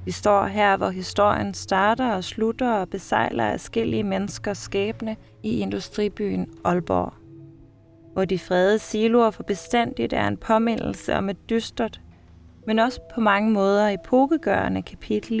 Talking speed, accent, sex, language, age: 135 wpm, native, female, Danish, 20-39